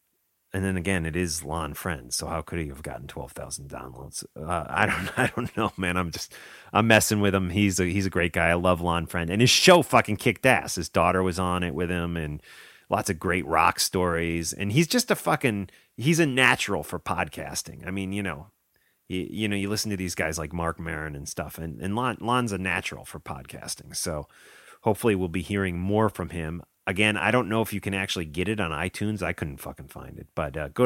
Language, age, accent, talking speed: English, 30-49, American, 235 wpm